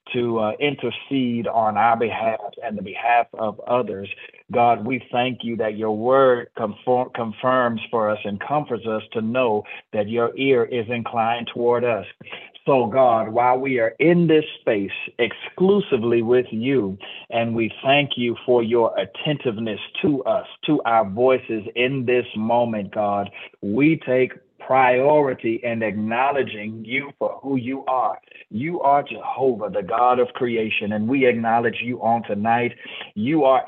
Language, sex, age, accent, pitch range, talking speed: English, male, 50-69, American, 115-130 Hz, 150 wpm